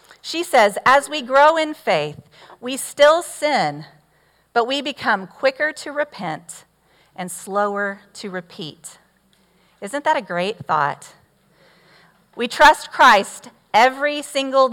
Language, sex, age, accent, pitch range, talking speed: English, female, 40-59, American, 185-275 Hz, 120 wpm